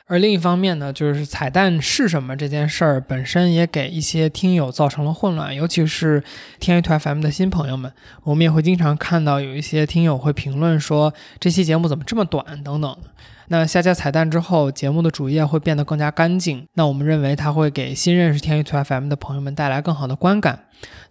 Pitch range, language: 145-175 Hz, Chinese